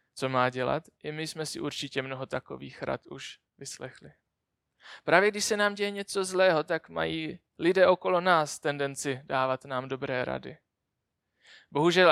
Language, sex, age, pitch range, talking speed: Czech, male, 20-39, 140-170 Hz, 155 wpm